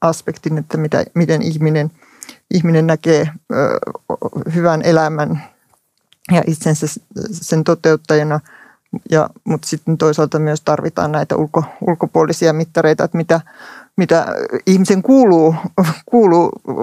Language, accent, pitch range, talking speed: Finnish, native, 160-175 Hz, 90 wpm